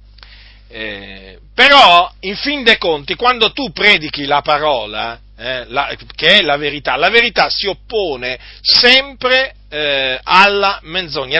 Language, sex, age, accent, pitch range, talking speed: Italian, male, 40-59, native, 150-245 Hz, 125 wpm